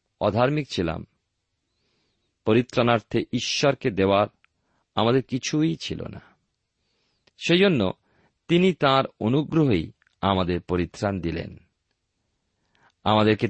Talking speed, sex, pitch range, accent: 75 wpm, male, 95-140 Hz, native